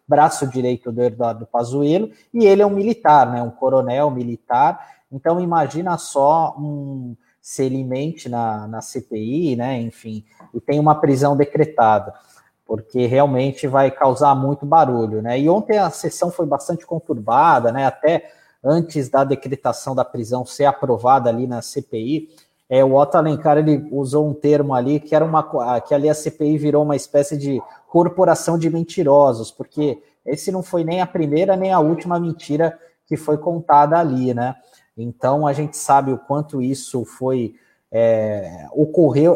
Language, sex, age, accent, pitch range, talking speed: Portuguese, male, 20-39, Brazilian, 130-165 Hz, 155 wpm